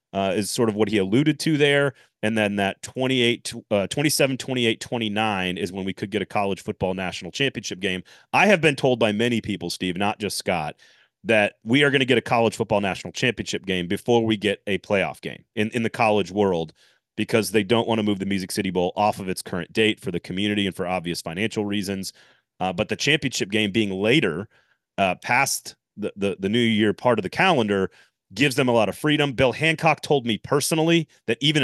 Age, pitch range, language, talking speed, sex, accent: 30-49, 100-130 Hz, English, 220 wpm, male, American